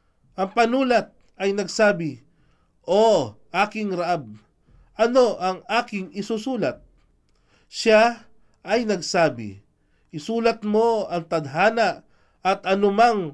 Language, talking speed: Filipino, 90 wpm